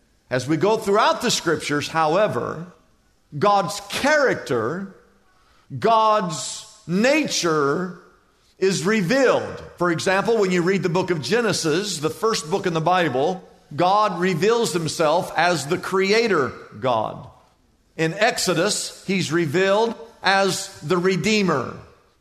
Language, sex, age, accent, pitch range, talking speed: English, male, 50-69, American, 175-215 Hz, 115 wpm